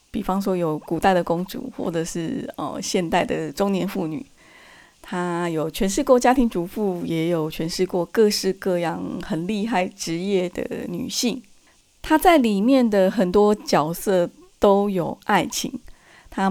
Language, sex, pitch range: Chinese, female, 175-225 Hz